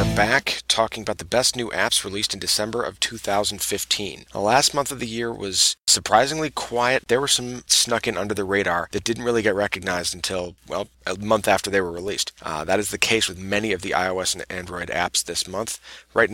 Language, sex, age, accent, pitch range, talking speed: English, male, 30-49, American, 95-115 Hz, 215 wpm